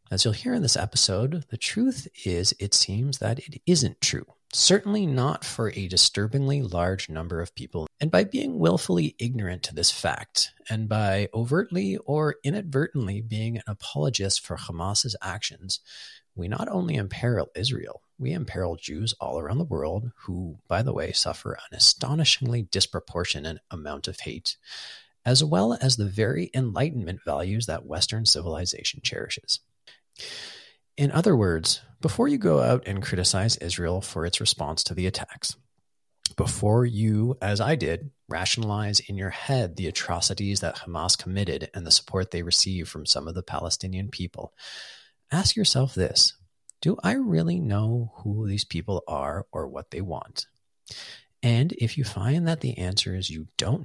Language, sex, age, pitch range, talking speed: English, male, 40-59, 95-130 Hz, 160 wpm